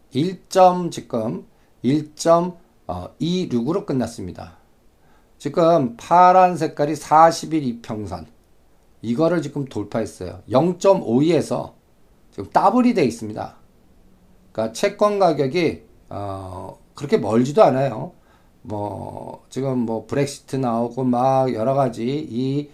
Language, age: Korean, 50-69